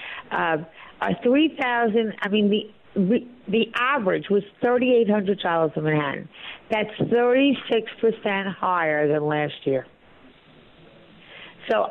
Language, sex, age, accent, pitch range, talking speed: English, female, 50-69, American, 190-245 Hz, 105 wpm